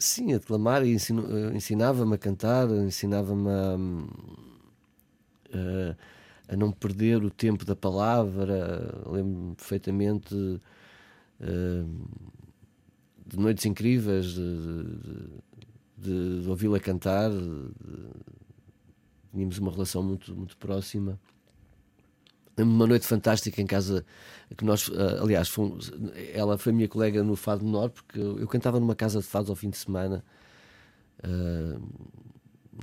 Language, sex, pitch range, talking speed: Portuguese, male, 95-110 Hz, 110 wpm